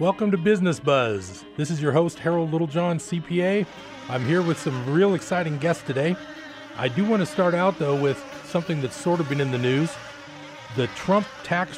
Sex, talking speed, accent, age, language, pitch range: male, 195 wpm, American, 40-59, English, 130-170 Hz